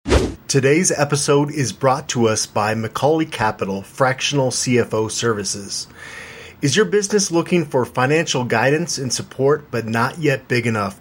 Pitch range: 120-150 Hz